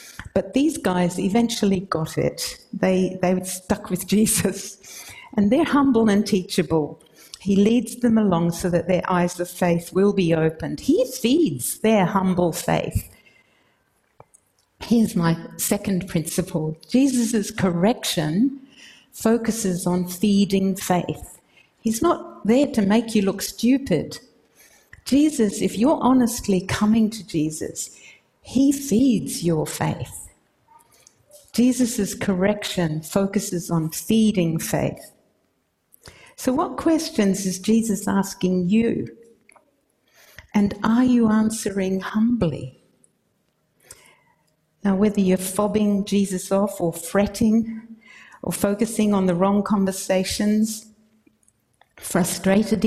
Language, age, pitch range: English, 60-79, 185-225 Hz